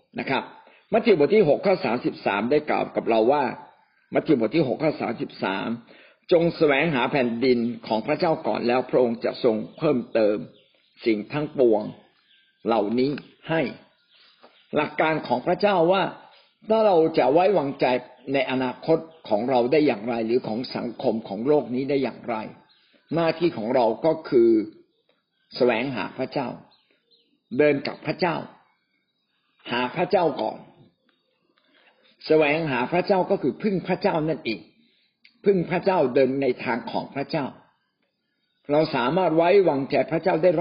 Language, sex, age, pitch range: Thai, male, 60-79, 130-175 Hz